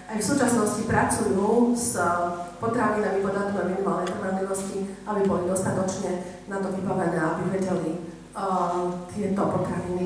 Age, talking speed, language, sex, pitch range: 40-59, 130 wpm, Slovak, female, 190-225 Hz